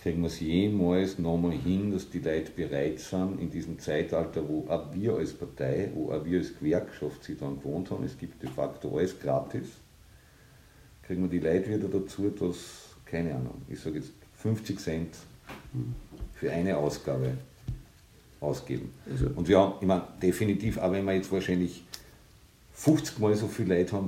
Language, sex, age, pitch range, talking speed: German, male, 50-69, 85-95 Hz, 170 wpm